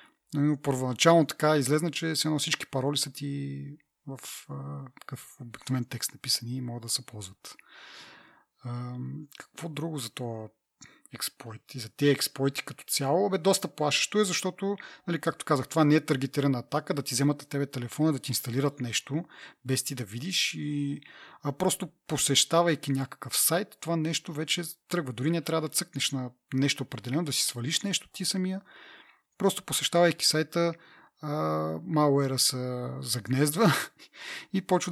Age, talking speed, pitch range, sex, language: 30-49, 160 wpm, 130-165 Hz, male, Bulgarian